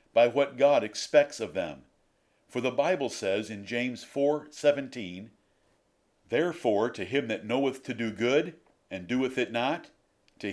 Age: 50-69